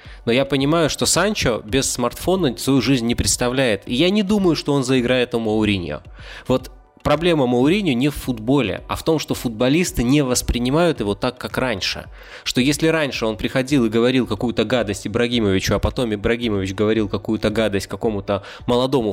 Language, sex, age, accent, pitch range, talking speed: Russian, male, 20-39, native, 105-140 Hz, 175 wpm